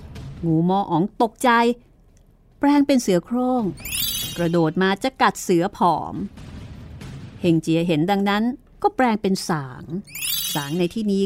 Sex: female